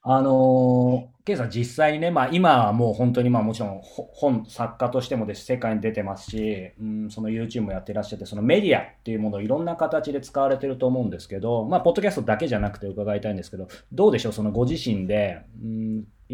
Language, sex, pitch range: Japanese, male, 105-135 Hz